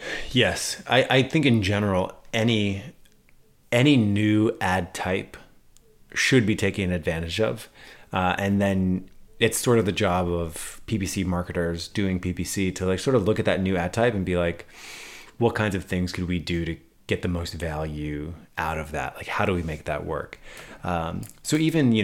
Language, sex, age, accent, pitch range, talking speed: English, male, 30-49, American, 90-110 Hz, 185 wpm